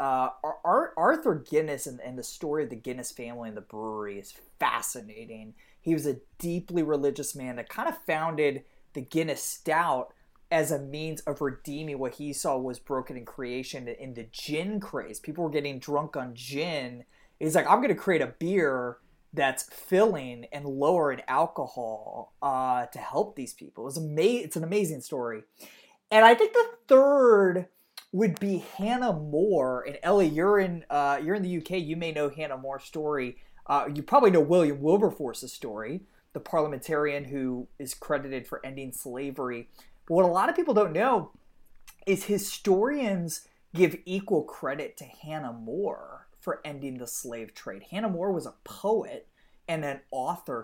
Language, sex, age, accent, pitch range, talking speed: English, male, 20-39, American, 130-175 Hz, 170 wpm